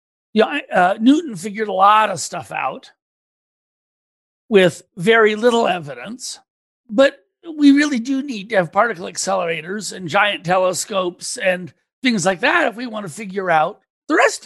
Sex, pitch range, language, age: male, 185-255 Hz, English, 60-79